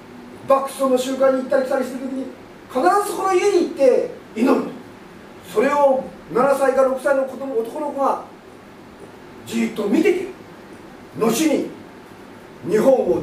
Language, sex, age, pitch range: English, male, 40-59, 230-365 Hz